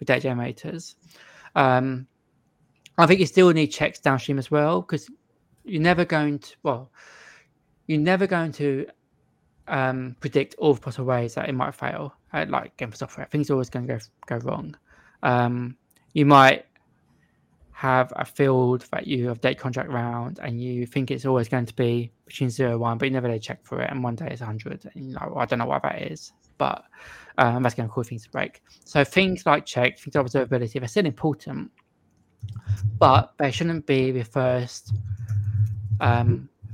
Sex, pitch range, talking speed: male, 120-145 Hz, 190 wpm